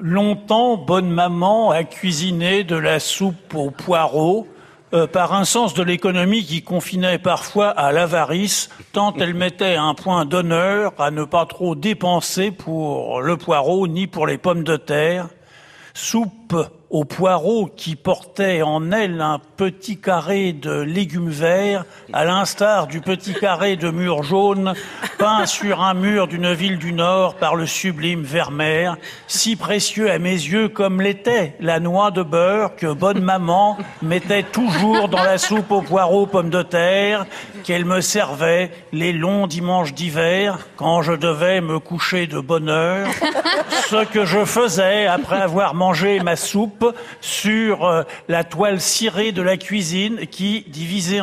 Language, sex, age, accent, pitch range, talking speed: French, male, 60-79, French, 170-205 Hz, 155 wpm